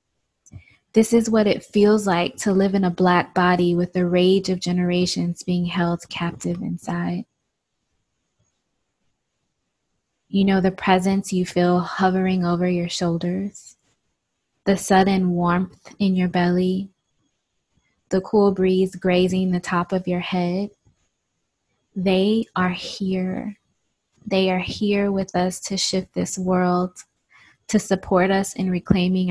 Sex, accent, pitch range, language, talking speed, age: female, American, 175-195 Hz, English, 130 wpm, 20-39